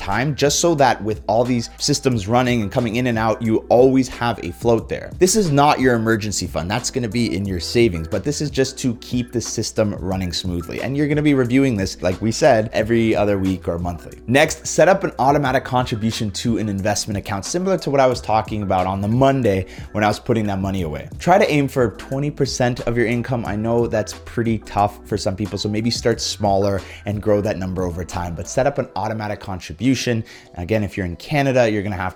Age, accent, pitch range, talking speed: 20-39, American, 100-125 Hz, 235 wpm